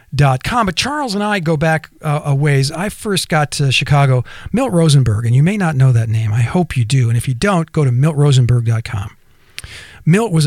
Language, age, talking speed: English, 50-69, 230 wpm